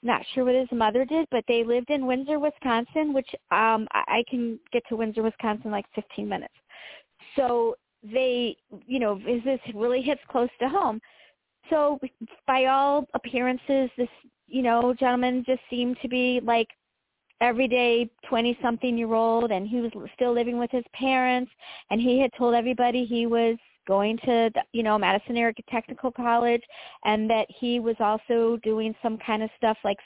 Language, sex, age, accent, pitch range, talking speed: English, female, 40-59, American, 220-255 Hz, 170 wpm